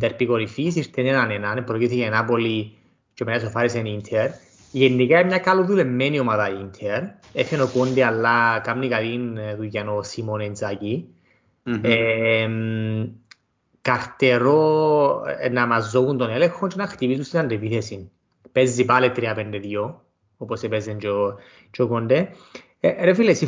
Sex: male